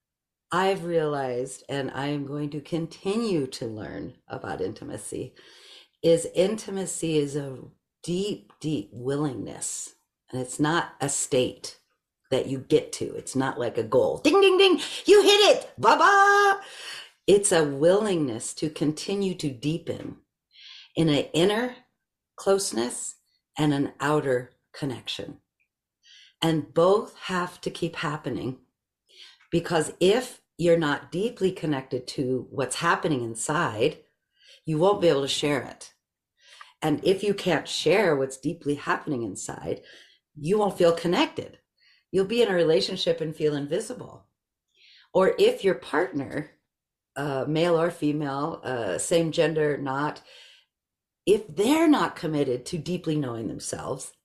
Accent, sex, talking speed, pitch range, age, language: American, female, 135 wpm, 145-210 Hz, 50-69, English